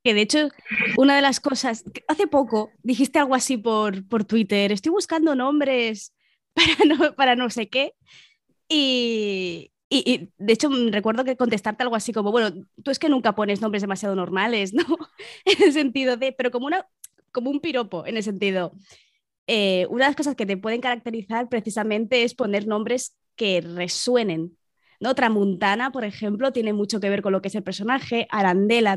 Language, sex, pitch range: Spanish, female, 200-255 Hz